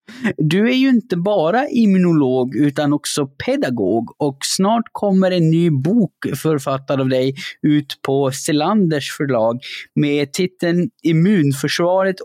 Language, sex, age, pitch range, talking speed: Swedish, male, 20-39, 145-195 Hz, 125 wpm